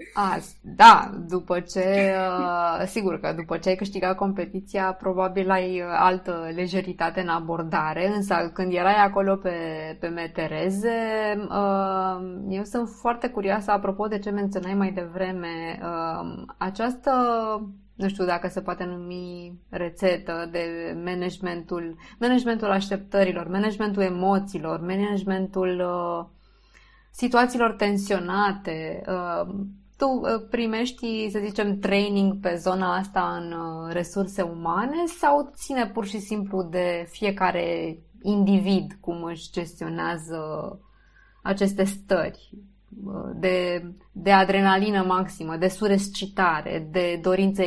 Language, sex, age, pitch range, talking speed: Romanian, female, 20-39, 175-200 Hz, 110 wpm